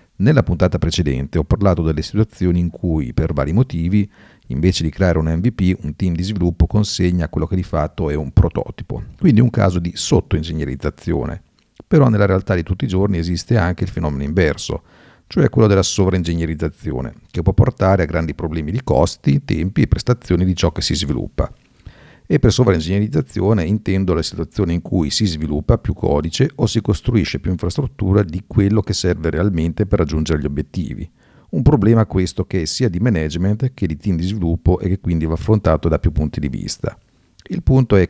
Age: 50-69